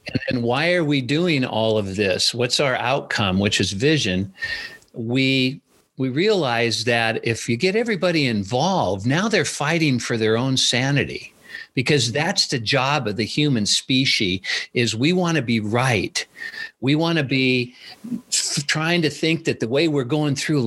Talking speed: 165 wpm